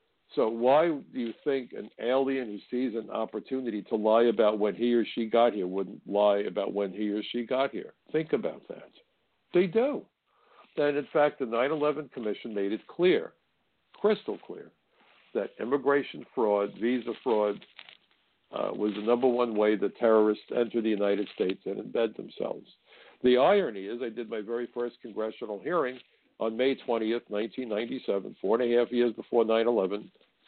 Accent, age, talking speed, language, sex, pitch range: American, 60-79, 170 wpm, English, male, 110-130 Hz